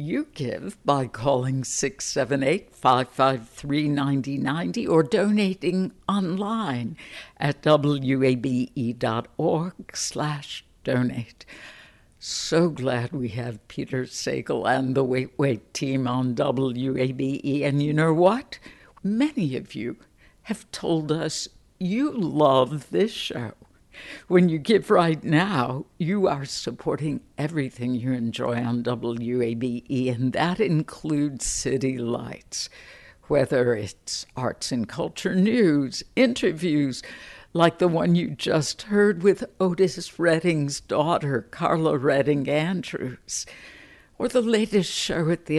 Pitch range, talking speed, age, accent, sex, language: 130-180 Hz, 110 wpm, 60-79, American, female, English